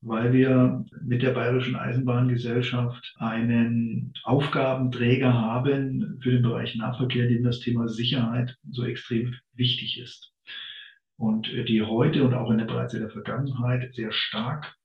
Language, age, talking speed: German, 50-69, 135 wpm